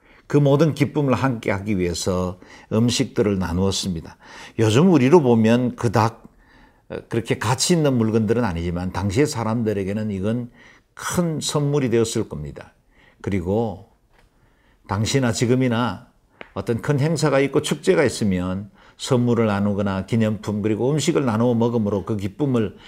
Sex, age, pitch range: male, 50-69, 95-130 Hz